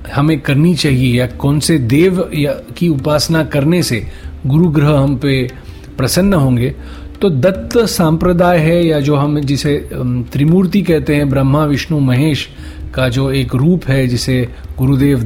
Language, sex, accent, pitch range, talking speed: Hindi, male, native, 125-155 Hz, 150 wpm